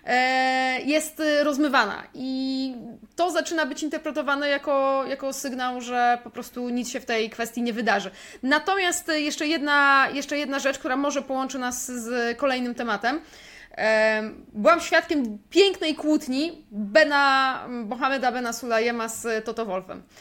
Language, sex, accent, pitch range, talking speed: Polish, female, native, 235-305 Hz, 125 wpm